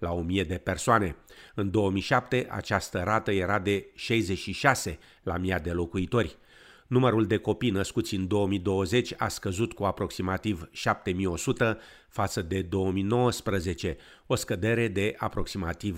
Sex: male